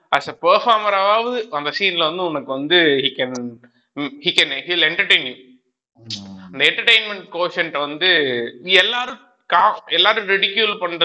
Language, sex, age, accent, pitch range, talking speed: Tamil, male, 20-39, native, 145-200 Hz, 55 wpm